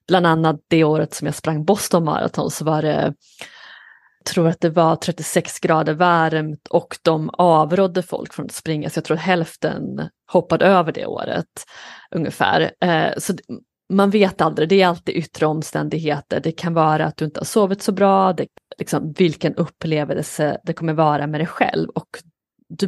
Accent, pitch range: native, 155-195 Hz